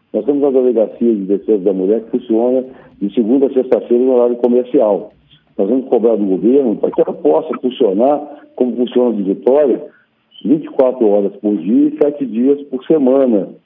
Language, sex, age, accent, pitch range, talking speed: Portuguese, male, 60-79, Brazilian, 110-135 Hz, 175 wpm